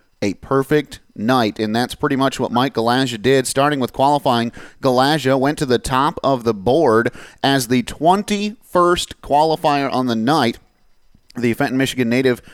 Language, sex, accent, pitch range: English, male, American, 120-155 Hz